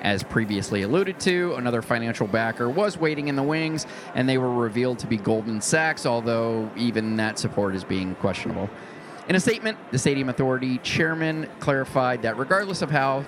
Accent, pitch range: American, 115-155 Hz